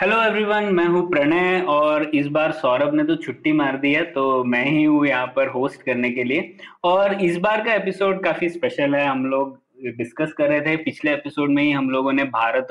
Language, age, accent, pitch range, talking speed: Hindi, 20-39, native, 135-185 Hz, 220 wpm